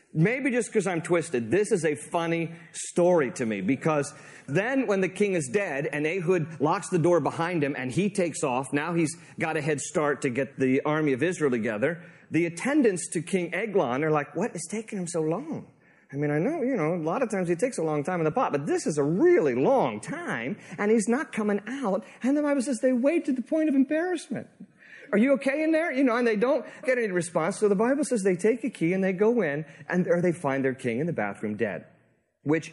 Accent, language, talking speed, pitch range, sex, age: American, English, 245 wpm, 160-230 Hz, male, 40-59